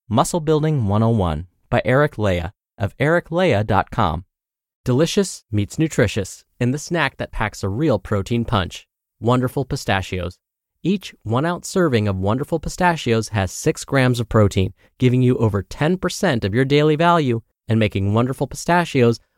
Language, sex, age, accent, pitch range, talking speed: English, male, 30-49, American, 100-150 Hz, 140 wpm